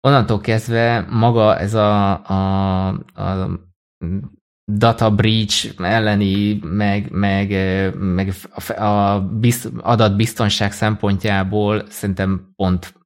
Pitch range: 90-110 Hz